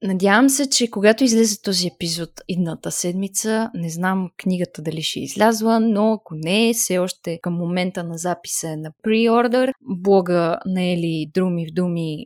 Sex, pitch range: female, 175-230 Hz